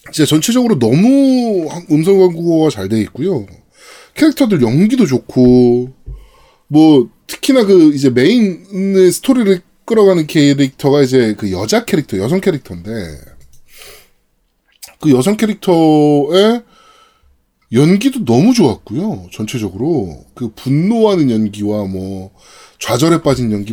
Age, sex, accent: 20-39, male, native